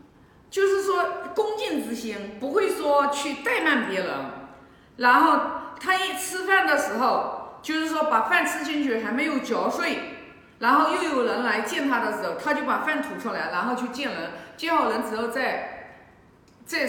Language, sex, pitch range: Chinese, female, 235-330 Hz